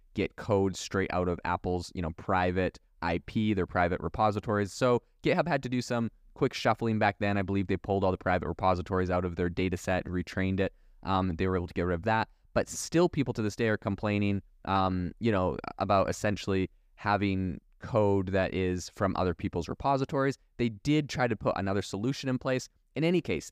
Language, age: English, 20-39